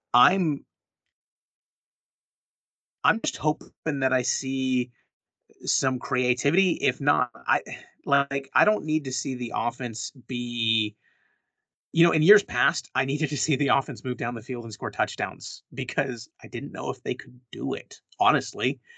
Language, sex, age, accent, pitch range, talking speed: English, male, 30-49, American, 110-135 Hz, 155 wpm